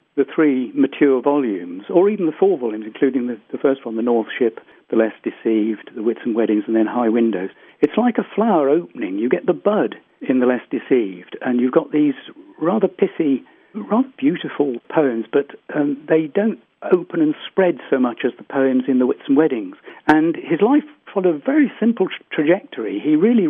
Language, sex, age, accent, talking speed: English, male, 60-79, British, 195 wpm